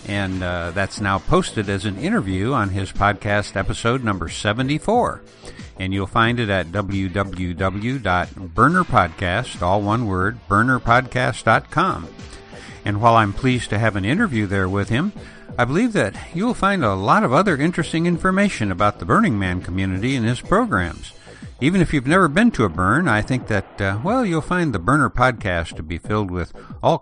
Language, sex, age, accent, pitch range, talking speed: English, male, 60-79, American, 95-130 Hz, 170 wpm